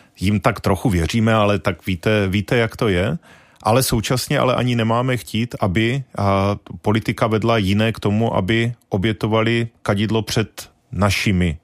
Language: Czech